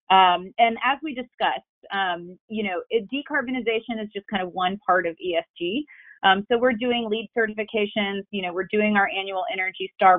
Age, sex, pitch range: 30-49, female, 180-220 Hz